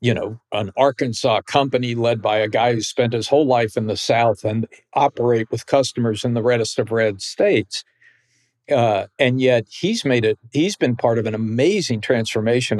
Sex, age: male, 50-69